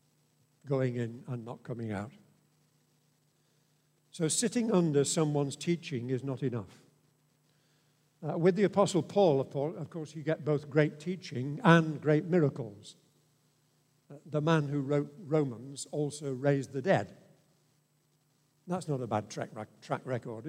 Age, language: 50-69, English